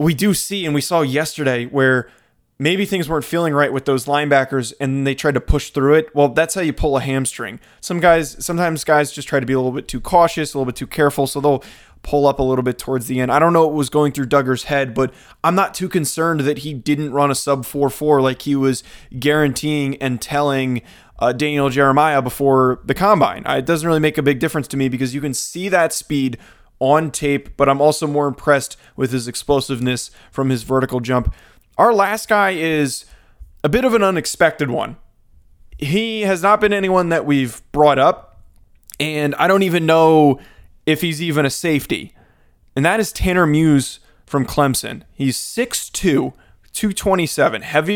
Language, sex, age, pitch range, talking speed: English, male, 20-39, 135-160 Hz, 200 wpm